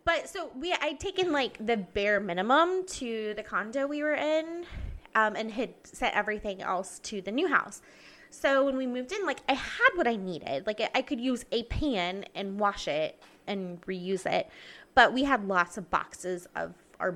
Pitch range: 190-255 Hz